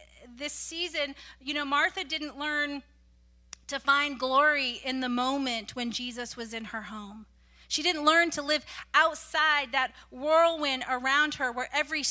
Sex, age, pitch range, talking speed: female, 30-49, 210-295 Hz, 155 wpm